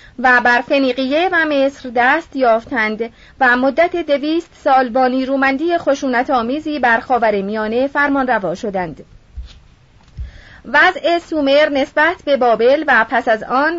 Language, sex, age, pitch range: Persian, female, 30-49, 245-310 Hz